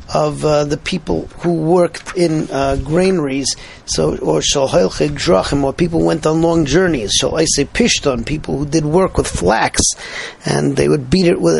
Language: English